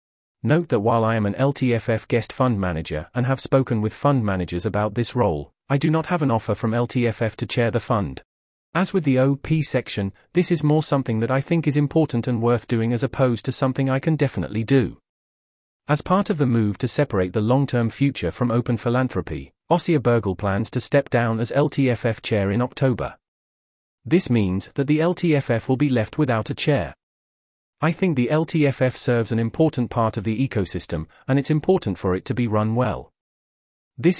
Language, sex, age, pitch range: English, male, 40-59, 110-140 Hz